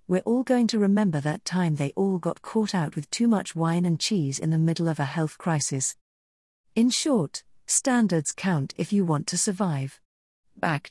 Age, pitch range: 40-59, 155-220 Hz